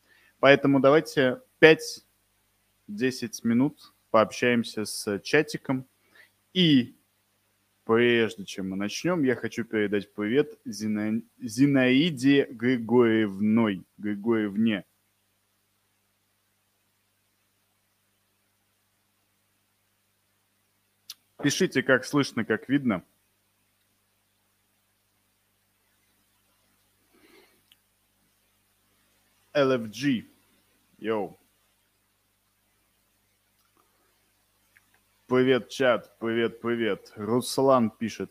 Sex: male